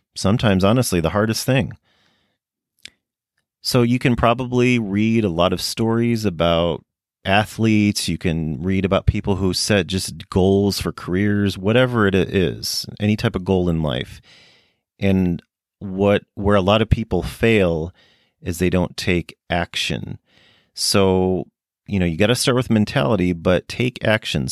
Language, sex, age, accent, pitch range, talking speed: English, male, 40-59, American, 90-105 Hz, 150 wpm